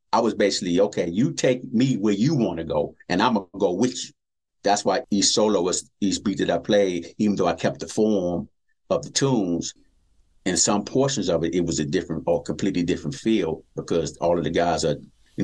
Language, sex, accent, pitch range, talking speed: English, male, American, 85-105 Hz, 225 wpm